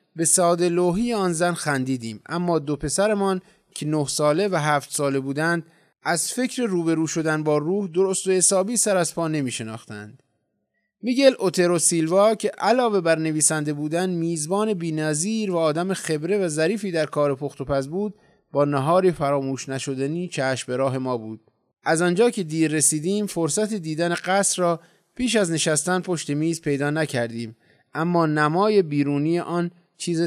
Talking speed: 160 wpm